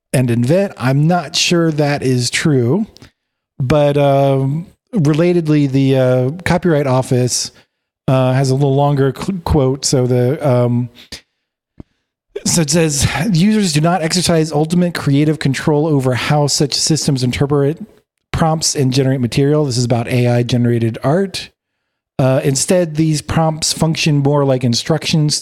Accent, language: American, English